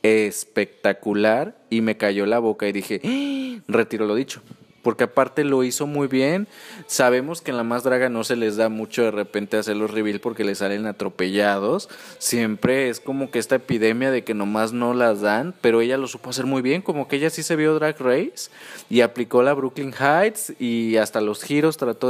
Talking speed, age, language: 200 wpm, 20-39, Spanish